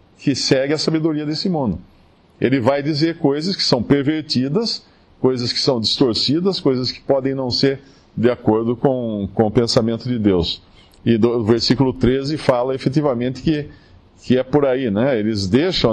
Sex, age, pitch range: male, 50-69, 115-150 Hz